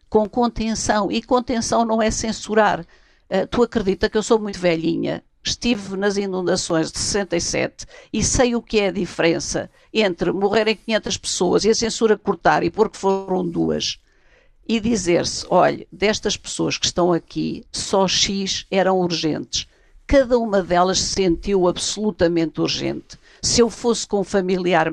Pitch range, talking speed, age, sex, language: 185-230 Hz, 150 wpm, 50-69, female, Portuguese